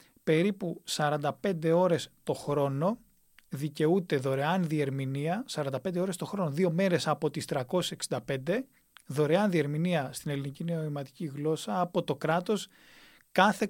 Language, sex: Greek, male